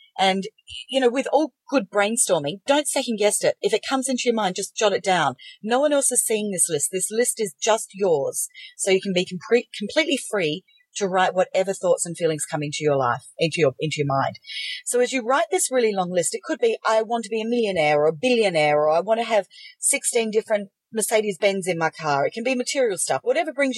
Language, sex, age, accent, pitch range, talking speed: English, female, 40-59, Australian, 175-270 Hz, 235 wpm